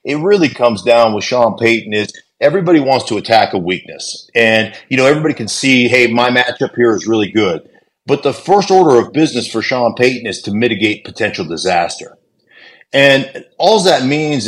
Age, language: 50-69, English